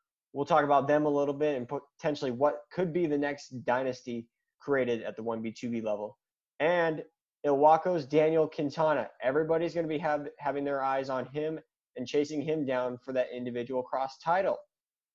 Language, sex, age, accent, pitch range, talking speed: English, male, 20-39, American, 125-155 Hz, 170 wpm